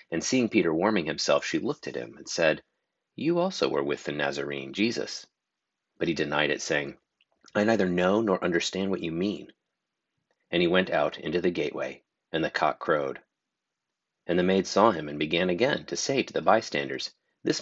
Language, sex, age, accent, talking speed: English, male, 40-59, American, 190 wpm